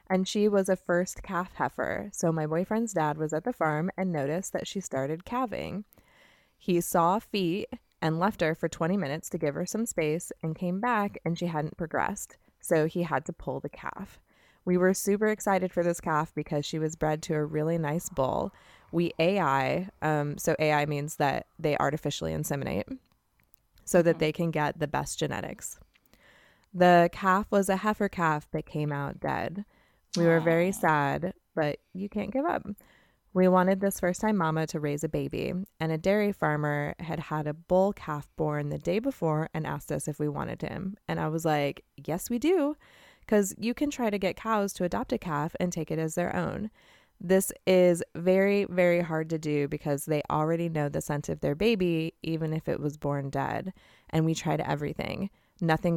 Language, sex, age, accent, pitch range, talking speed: English, female, 20-39, American, 155-190 Hz, 195 wpm